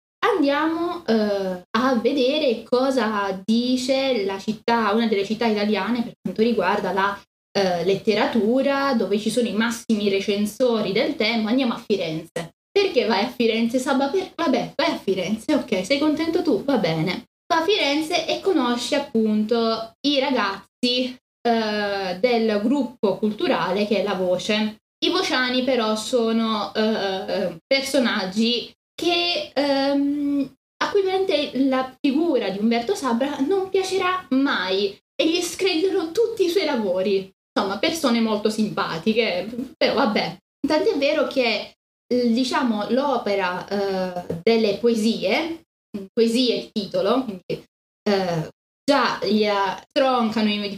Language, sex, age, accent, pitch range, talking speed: Italian, female, 10-29, native, 205-275 Hz, 125 wpm